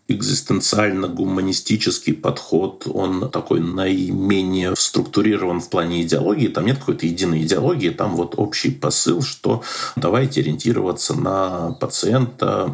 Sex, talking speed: male, 110 wpm